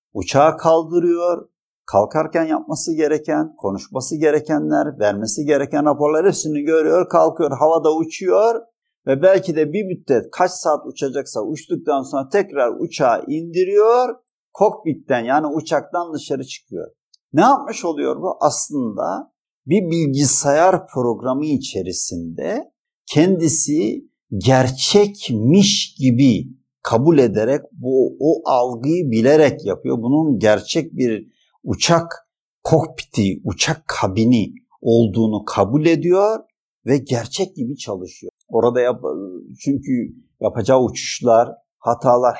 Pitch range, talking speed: 125-180 Hz, 100 wpm